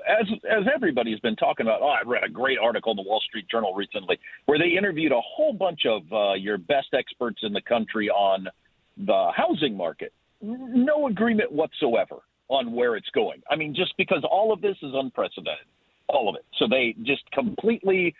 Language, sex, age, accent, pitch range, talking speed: English, male, 50-69, American, 140-230 Hz, 200 wpm